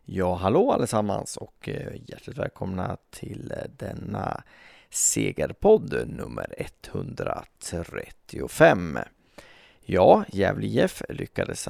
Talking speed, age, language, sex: 75 wpm, 30-49, Swedish, male